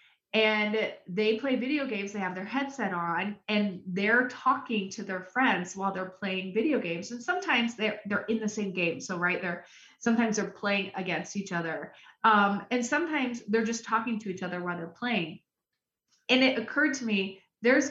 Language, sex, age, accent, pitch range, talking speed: English, female, 30-49, American, 185-235 Hz, 190 wpm